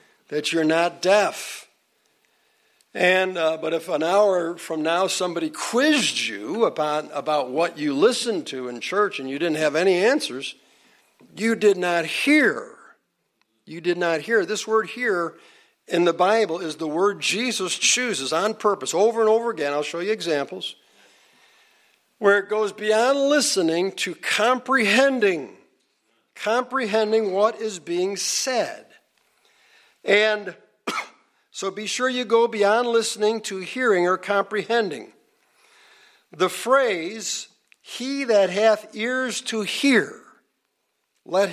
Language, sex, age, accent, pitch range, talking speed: English, male, 60-79, American, 175-230 Hz, 130 wpm